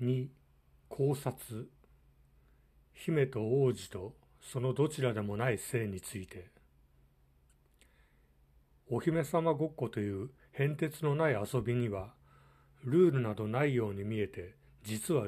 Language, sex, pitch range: Japanese, male, 95-135 Hz